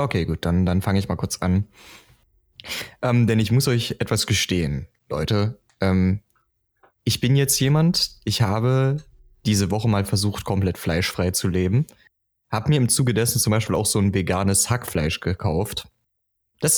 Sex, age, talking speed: male, 20-39, 165 wpm